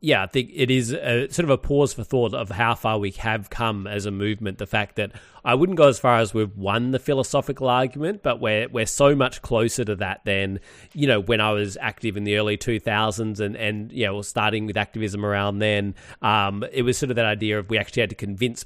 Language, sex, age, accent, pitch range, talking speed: English, male, 30-49, Australian, 100-120 Hz, 245 wpm